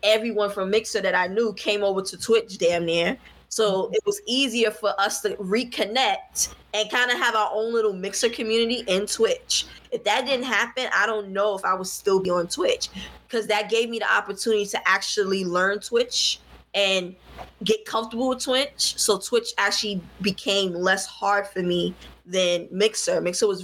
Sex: female